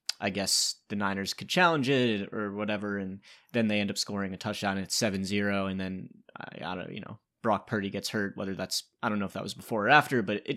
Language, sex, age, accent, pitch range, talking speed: English, male, 20-39, American, 100-125 Hz, 245 wpm